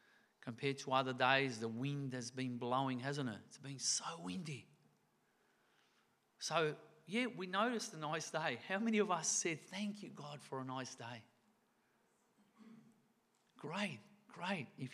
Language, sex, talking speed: English, male, 150 wpm